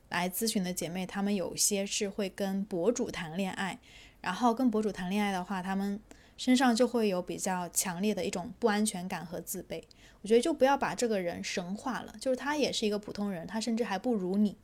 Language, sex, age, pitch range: Chinese, female, 20-39, 195-240 Hz